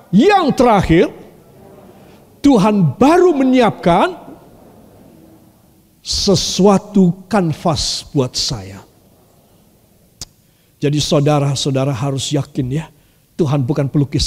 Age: 50-69